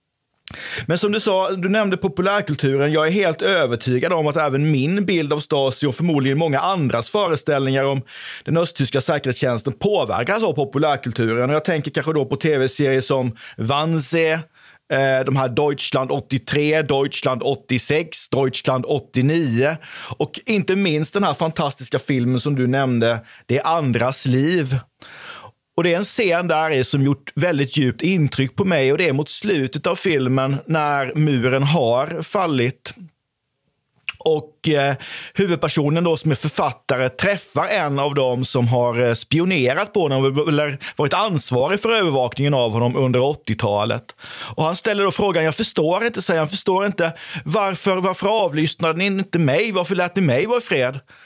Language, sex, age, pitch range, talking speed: Swedish, male, 30-49, 135-170 Hz, 160 wpm